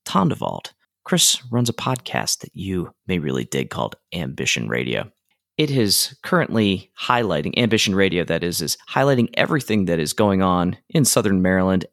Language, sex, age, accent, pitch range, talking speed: English, male, 30-49, American, 85-115 Hz, 160 wpm